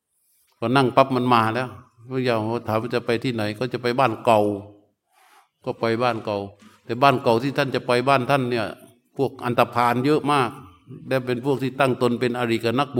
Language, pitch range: Thai, 110-125 Hz